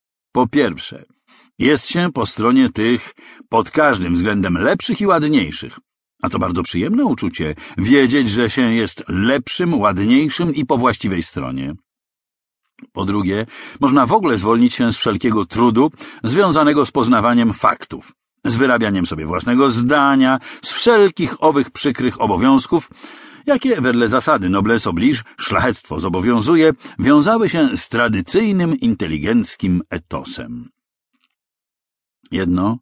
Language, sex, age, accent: English, male, 50-69, Polish